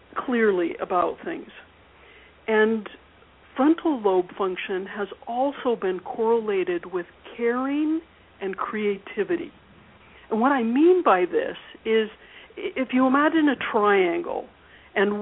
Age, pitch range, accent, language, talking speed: 60-79, 195-265 Hz, American, English, 110 wpm